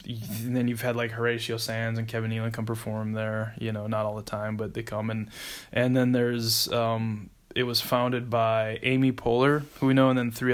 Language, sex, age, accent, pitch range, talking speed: English, male, 20-39, American, 115-125 Hz, 220 wpm